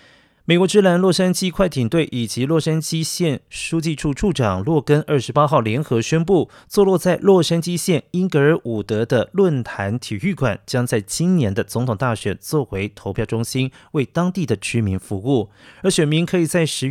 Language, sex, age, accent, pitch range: Chinese, male, 30-49, native, 115-170 Hz